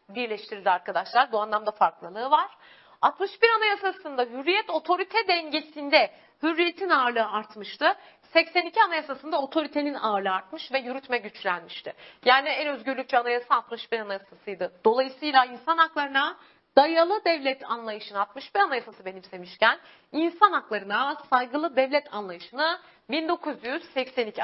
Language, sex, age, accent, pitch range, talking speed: Turkish, female, 40-59, native, 220-355 Hz, 105 wpm